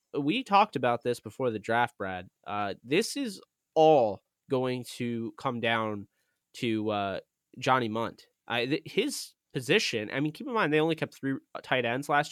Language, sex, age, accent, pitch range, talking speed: English, male, 20-39, American, 110-135 Hz, 170 wpm